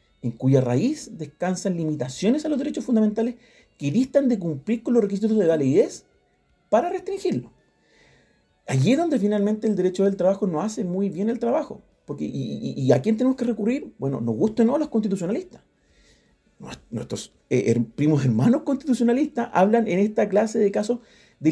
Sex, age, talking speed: male, 40-59, 160 wpm